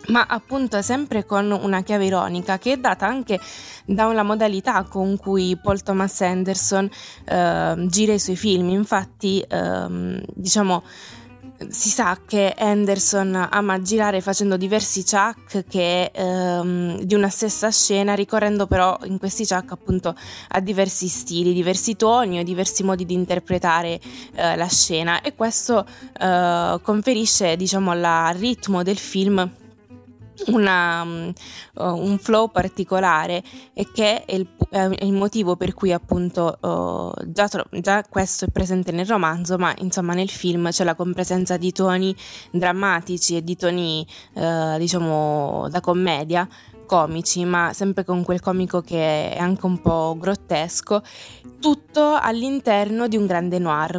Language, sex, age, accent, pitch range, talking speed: Italian, female, 20-39, native, 175-200 Hz, 140 wpm